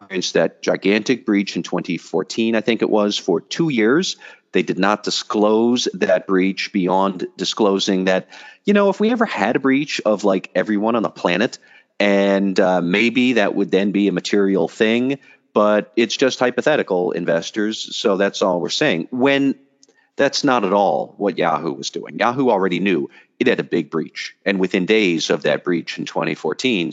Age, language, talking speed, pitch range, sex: 40-59, English, 180 wpm, 95-115 Hz, male